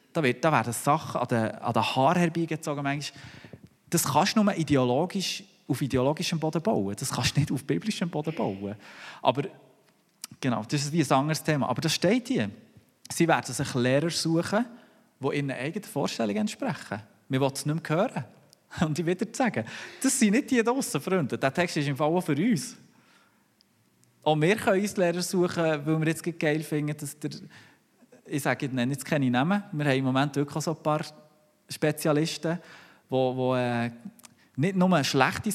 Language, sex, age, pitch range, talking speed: German, male, 30-49, 135-180 Hz, 170 wpm